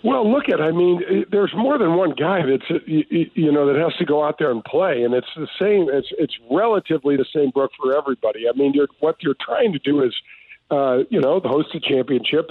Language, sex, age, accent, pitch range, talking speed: English, male, 50-69, American, 135-175 Hz, 220 wpm